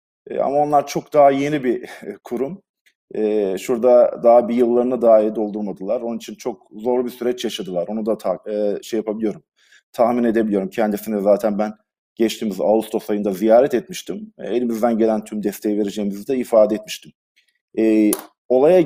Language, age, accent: Turkish, 50-69, native